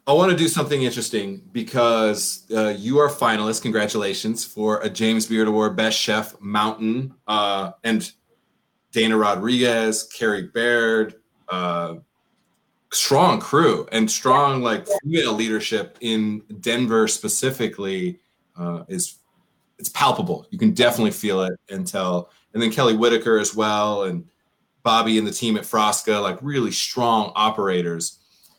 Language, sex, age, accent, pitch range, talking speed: English, male, 30-49, American, 110-135 Hz, 135 wpm